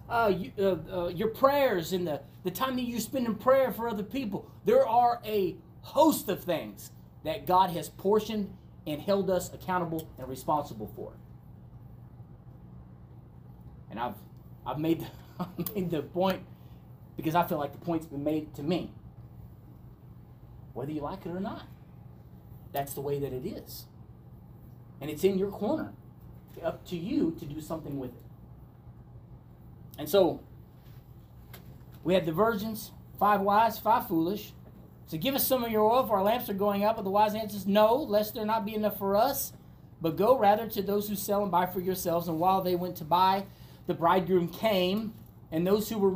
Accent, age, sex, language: American, 30-49, male, English